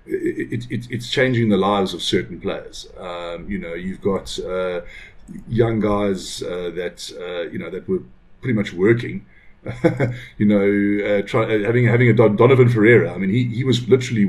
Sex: male